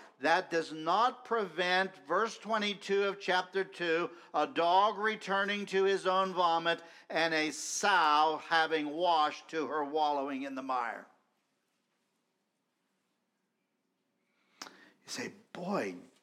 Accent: American